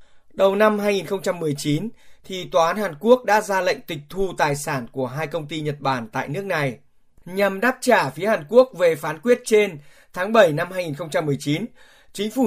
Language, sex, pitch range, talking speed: Vietnamese, male, 155-210 Hz, 195 wpm